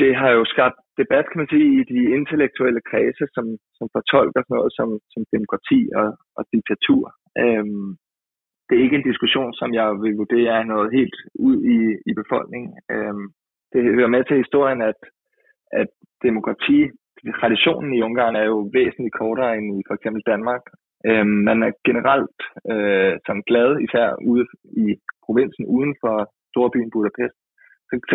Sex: male